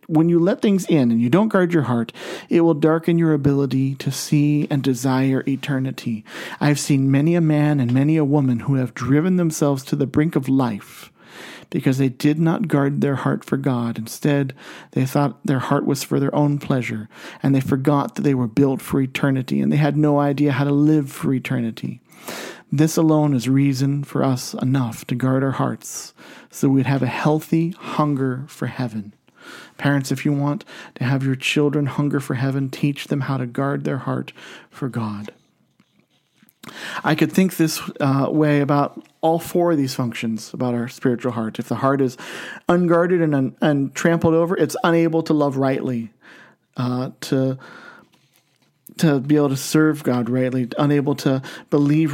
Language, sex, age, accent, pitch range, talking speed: English, male, 40-59, American, 130-150 Hz, 185 wpm